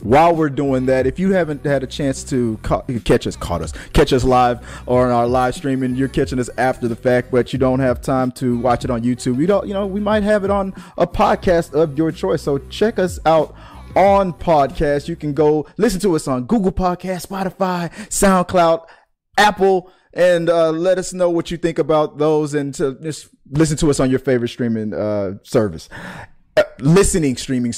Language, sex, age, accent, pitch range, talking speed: English, male, 30-49, American, 130-190 Hz, 210 wpm